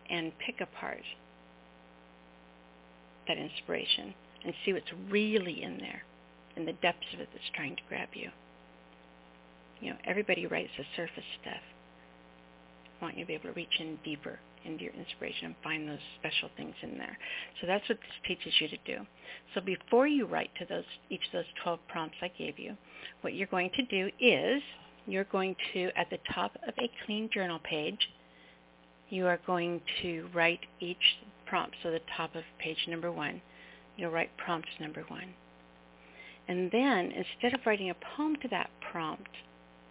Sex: female